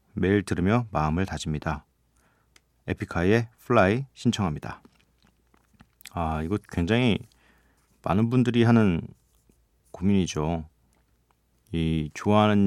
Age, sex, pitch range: 40-59, male, 80-115 Hz